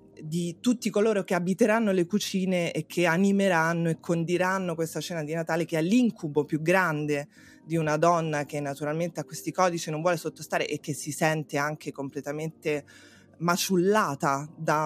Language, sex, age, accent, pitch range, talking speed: Italian, female, 20-39, native, 150-185 Hz, 160 wpm